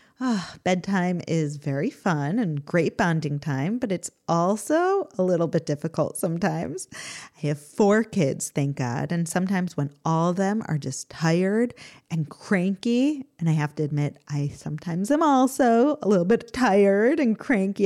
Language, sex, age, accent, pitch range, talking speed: English, female, 30-49, American, 165-240 Hz, 160 wpm